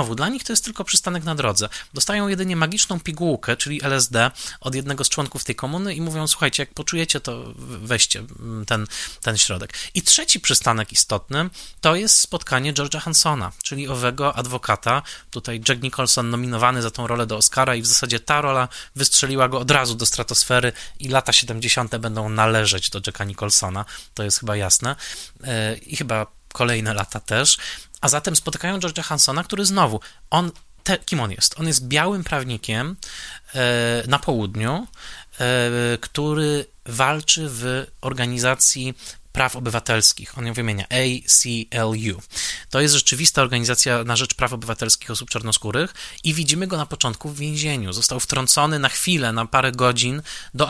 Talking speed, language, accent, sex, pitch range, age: 155 wpm, Polish, native, male, 115-155 Hz, 20-39